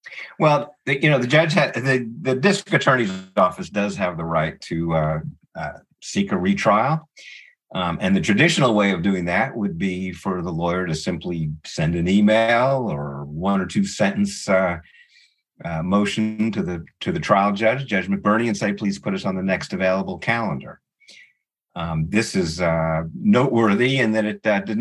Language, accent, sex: English, American, male